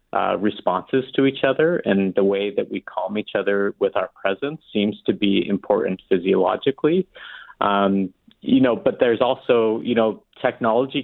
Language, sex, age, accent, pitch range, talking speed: English, male, 30-49, American, 100-130 Hz, 165 wpm